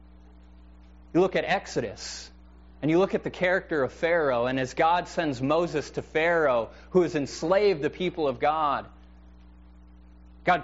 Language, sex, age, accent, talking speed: English, male, 20-39, American, 150 wpm